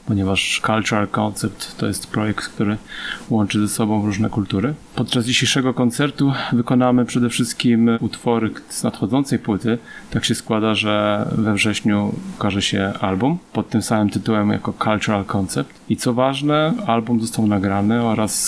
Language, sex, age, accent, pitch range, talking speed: Polish, male, 30-49, native, 105-120 Hz, 145 wpm